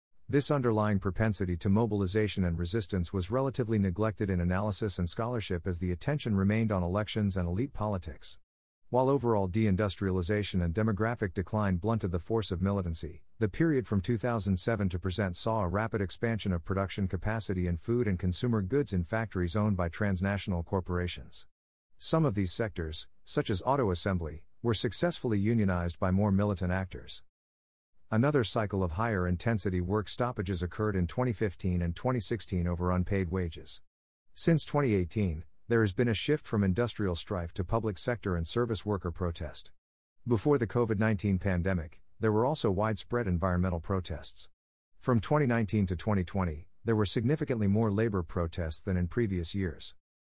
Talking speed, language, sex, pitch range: 155 wpm, English, male, 90-115 Hz